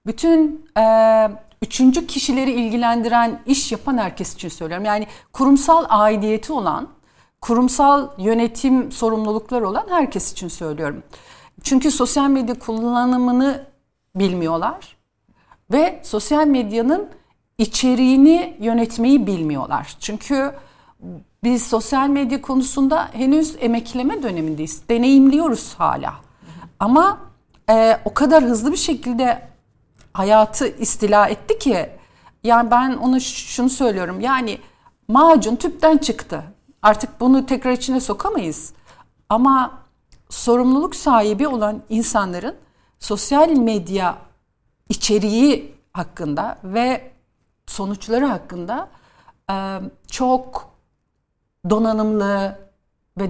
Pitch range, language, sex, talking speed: 210-270 Hz, Turkish, female, 90 wpm